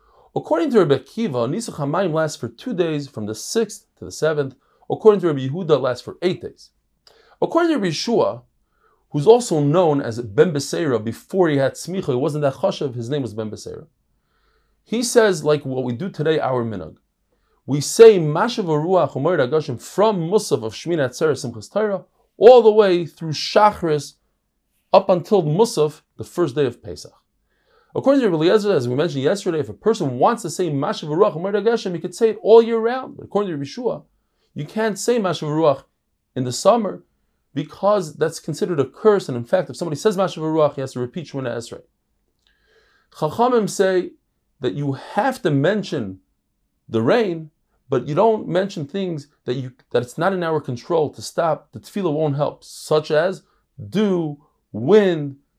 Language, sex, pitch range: English, male, 140-205 Hz